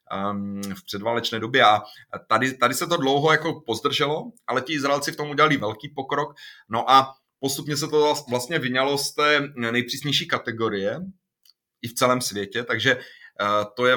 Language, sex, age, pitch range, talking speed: Slovak, male, 30-49, 110-130 Hz, 160 wpm